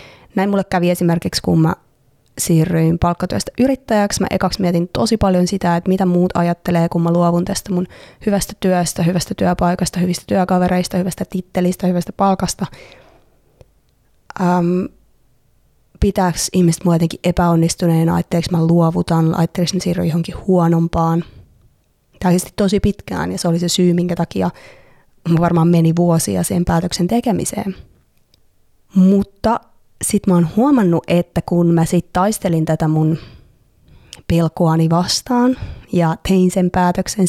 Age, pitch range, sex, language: 20-39, 170-190 Hz, female, Finnish